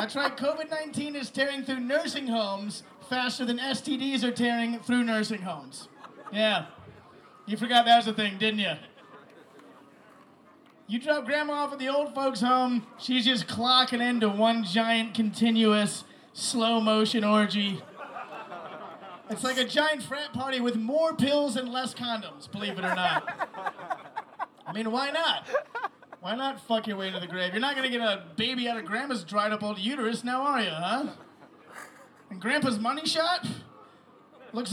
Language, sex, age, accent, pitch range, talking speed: English, male, 30-49, American, 220-260 Hz, 160 wpm